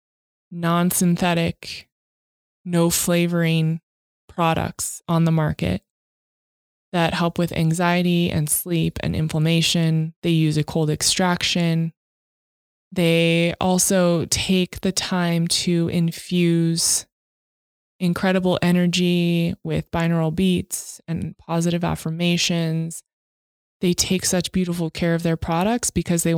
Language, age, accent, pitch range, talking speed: English, 20-39, American, 165-185 Hz, 100 wpm